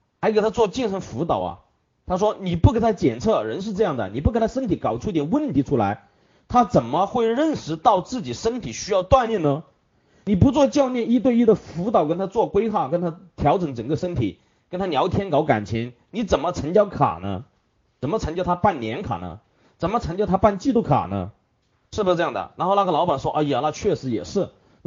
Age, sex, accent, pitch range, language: 30-49, male, native, 130-215 Hz, Chinese